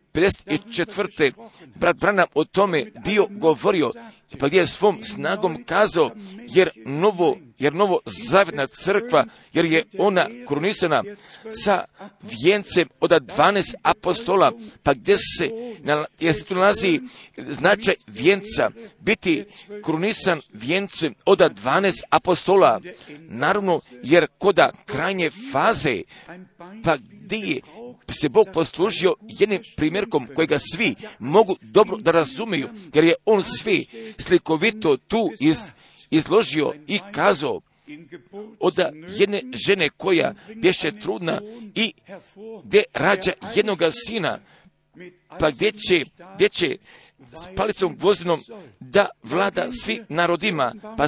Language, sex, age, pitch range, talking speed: Croatian, male, 50-69, 165-210 Hz, 110 wpm